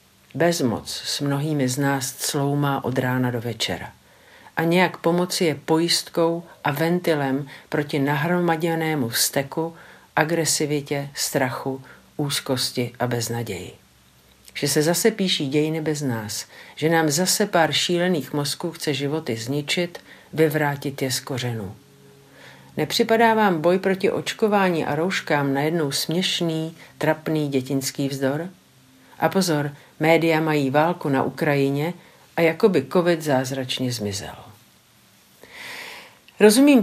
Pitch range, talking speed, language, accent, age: 135-170 Hz, 115 wpm, Czech, native, 50-69